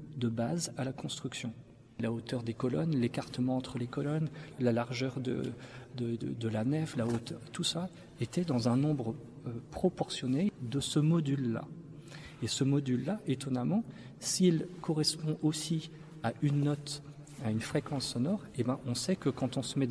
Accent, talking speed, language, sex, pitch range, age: French, 175 wpm, French, male, 120-150 Hz, 40-59